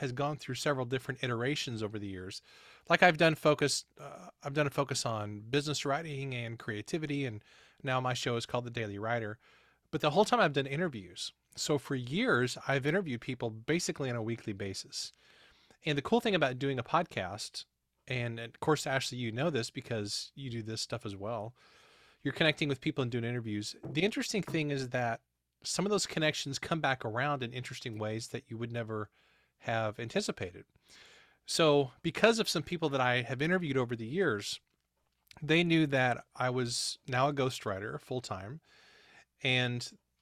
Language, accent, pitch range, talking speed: English, American, 115-150 Hz, 180 wpm